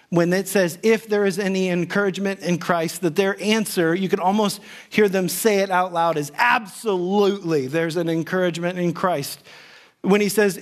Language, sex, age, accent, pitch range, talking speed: English, male, 40-59, American, 170-215 Hz, 180 wpm